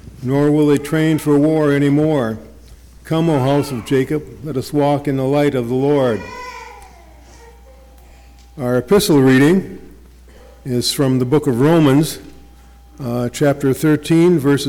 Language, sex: English, male